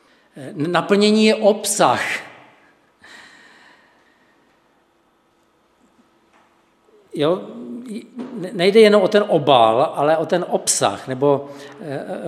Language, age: Czech, 50-69